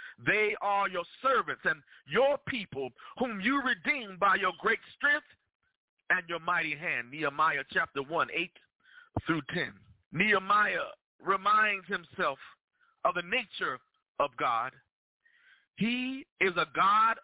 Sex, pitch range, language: male, 200-275 Hz, English